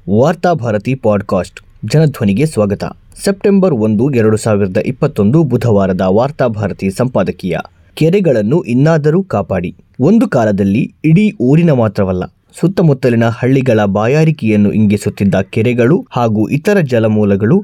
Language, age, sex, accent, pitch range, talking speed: Kannada, 20-39, male, native, 105-155 Hz, 95 wpm